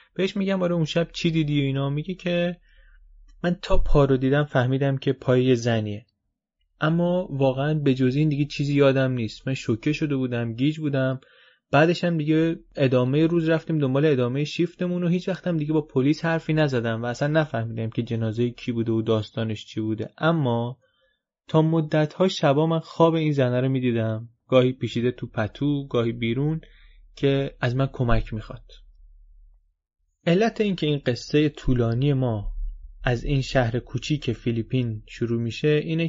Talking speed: 165 wpm